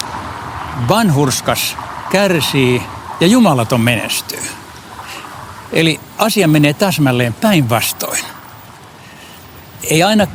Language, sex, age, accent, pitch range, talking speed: Finnish, male, 60-79, native, 115-150 Hz, 70 wpm